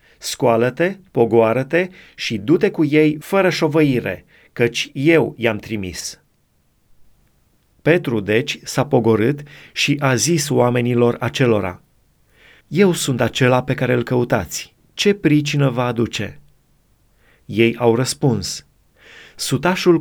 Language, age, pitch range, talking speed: Romanian, 30-49, 115-150 Hz, 110 wpm